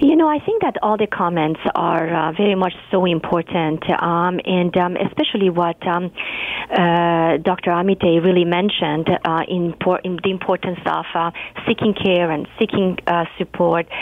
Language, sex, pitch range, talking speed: English, female, 180-245 Hz, 165 wpm